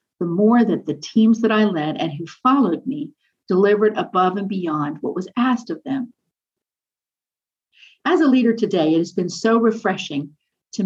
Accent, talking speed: American, 170 wpm